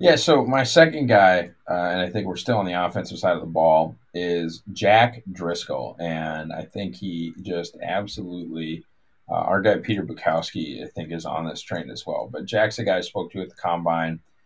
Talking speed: 210 wpm